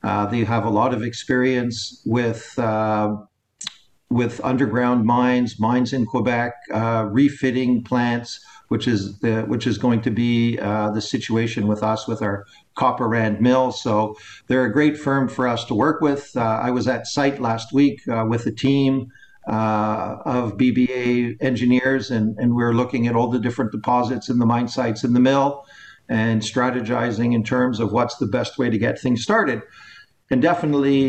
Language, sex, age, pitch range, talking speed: English, male, 50-69, 115-130 Hz, 180 wpm